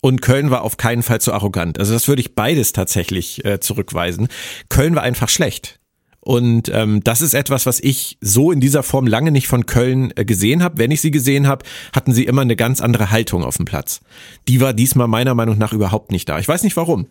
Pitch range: 110-135 Hz